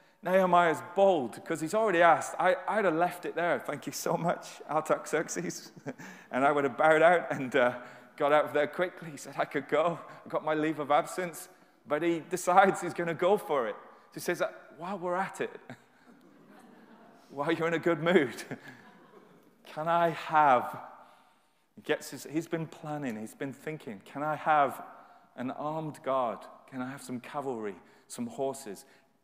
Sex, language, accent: male, English, British